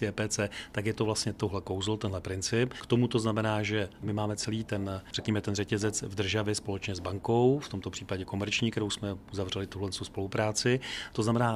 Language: Czech